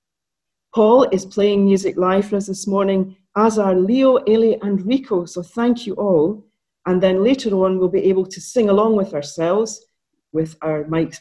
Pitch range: 160-205 Hz